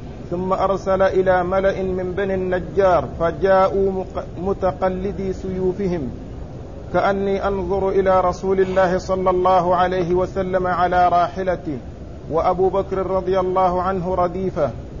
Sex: male